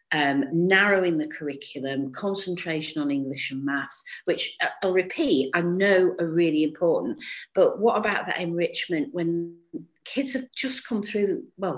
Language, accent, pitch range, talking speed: English, British, 165-265 Hz, 150 wpm